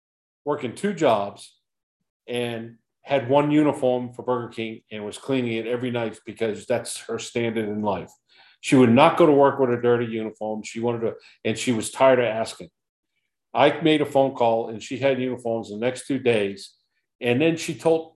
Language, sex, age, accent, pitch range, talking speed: English, male, 50-69, American, 120-160 Hz, 190 wpm